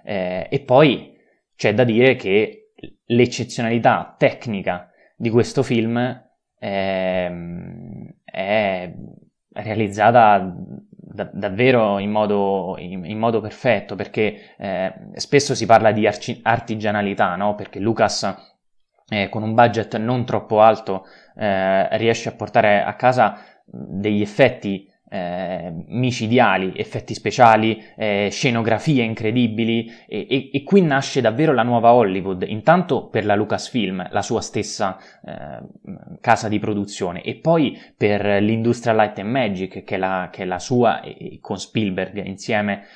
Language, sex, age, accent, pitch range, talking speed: Italian, male, 20-39, native, 100-120 Hz, 135 wpm